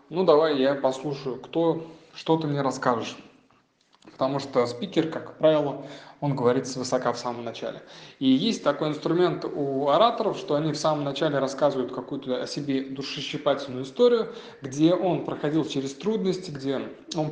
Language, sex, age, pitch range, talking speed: Russian, male, 20-39, 135-170 Hz, 150 wpm